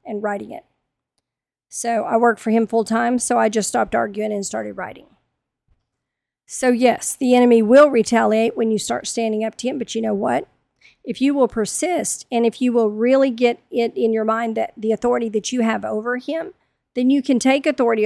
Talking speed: 205 wpm